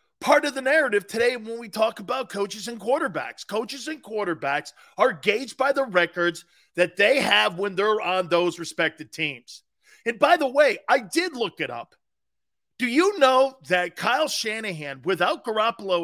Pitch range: 185-285 Hz